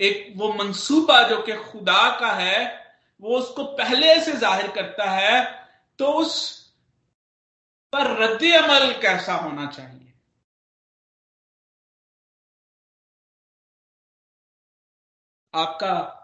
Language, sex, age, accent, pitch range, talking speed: Hindi, male, 50-69, native, 165-210 Hz, 90 wpm